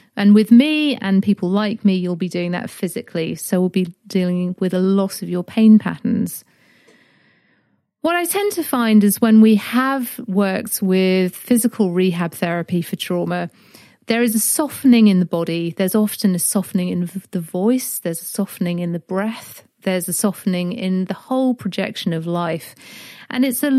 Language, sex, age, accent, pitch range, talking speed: English, female, 40-59, British, 185-235 Hz, 180 wpm